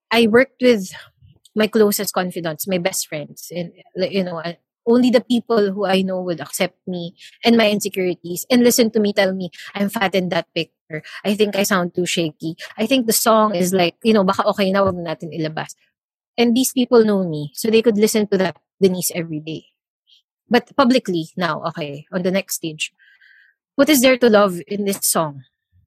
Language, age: English, 20-39